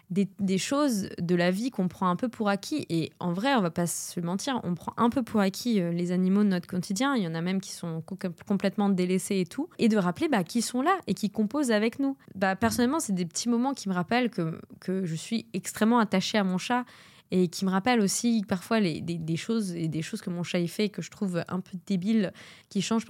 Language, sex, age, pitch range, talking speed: French, female, 20-39, 180-225 Hz, 260 wpm